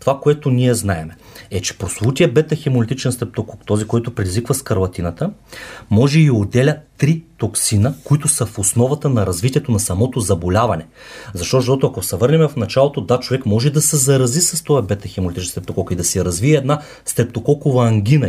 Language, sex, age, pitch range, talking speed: Bulgarian, male, 30-49, 100-140 Hz, 160 wpm